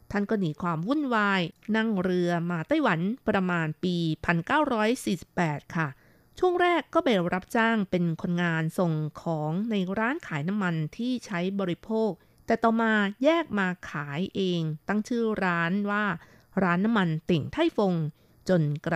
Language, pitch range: Thai, 165-215 Hz